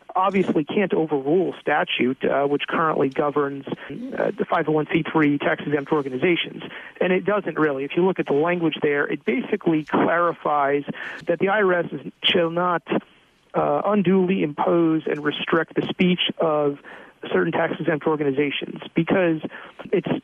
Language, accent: English, American